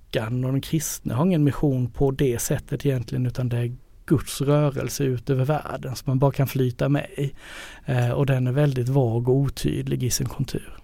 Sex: male